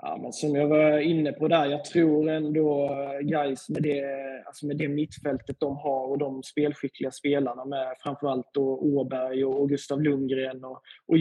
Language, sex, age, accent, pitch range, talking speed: Swedish, male, 20-39, native, 135-155 Hz, 175 wpm